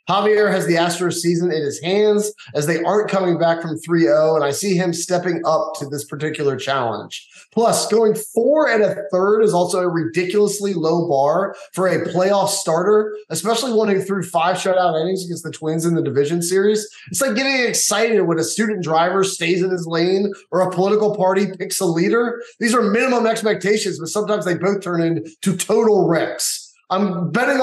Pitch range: 165-205 Hz